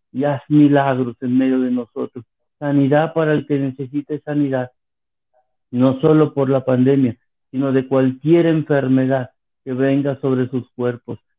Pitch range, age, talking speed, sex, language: 125-145 Hz, 50-69, 140 wpm, male, Spanish